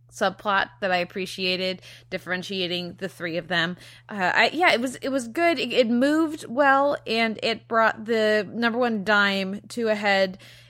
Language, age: English, 20-39